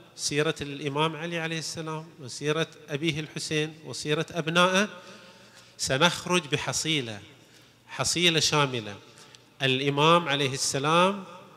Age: 30-49